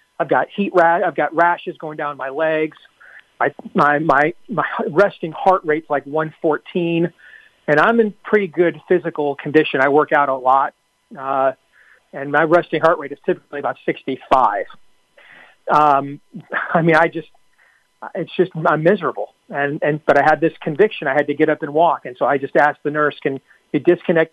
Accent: American